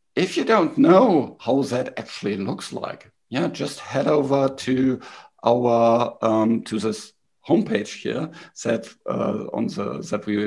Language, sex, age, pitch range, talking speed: English, male, 50-69, 110-135 Hz, 150 wpm